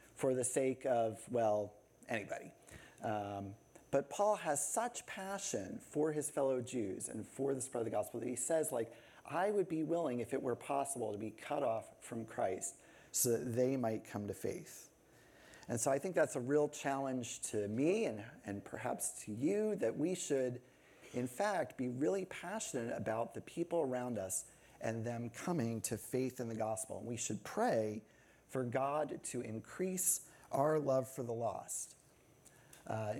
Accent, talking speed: American, 175 wpm